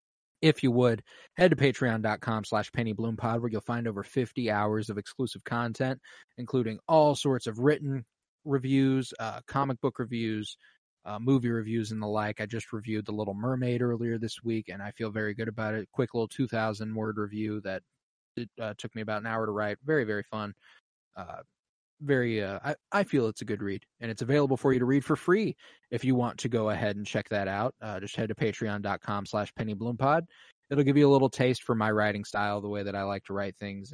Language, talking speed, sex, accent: English, 210 wpm, male, American